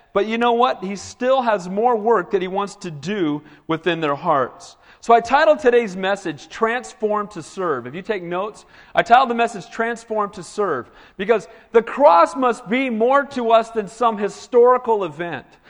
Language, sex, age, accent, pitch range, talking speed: English, male, 40-59, American, 160-225 Hz, 185 wpm